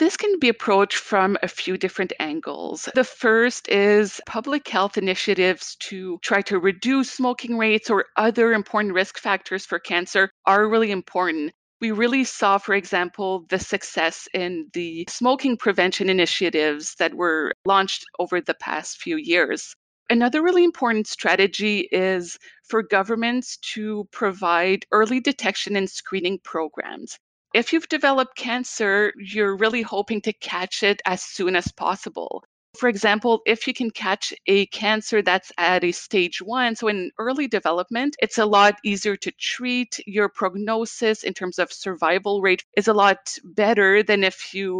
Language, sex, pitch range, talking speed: English, female, 185-230 Hz, 155 wpm